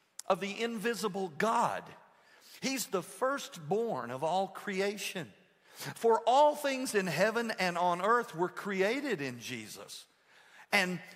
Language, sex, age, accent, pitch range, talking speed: English, male, 50-69, American, 200-260 Hz, 125 wpm